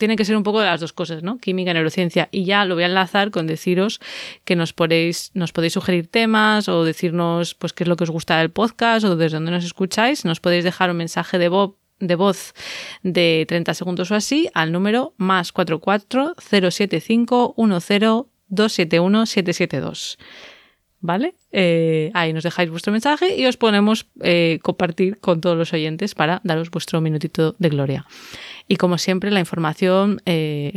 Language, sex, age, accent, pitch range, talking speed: Spanish, female, 20-39, Spanish, 165-205 Hz, 175 wpm